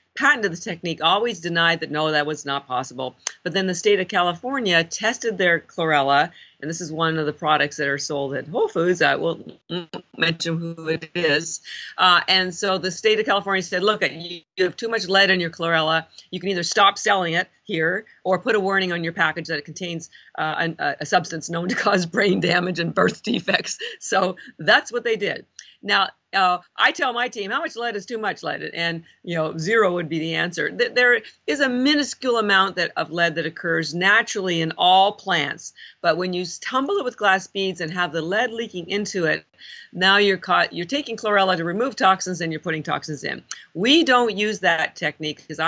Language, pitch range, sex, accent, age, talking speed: English, 160-205 Hz, female, American, 40-59, 210 wpm